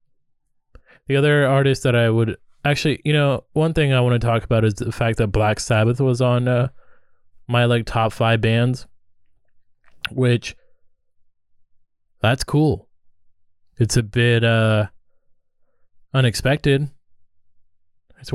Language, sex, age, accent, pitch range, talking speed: English, male, 20-39, American, 95-120 Hz, 130 wpm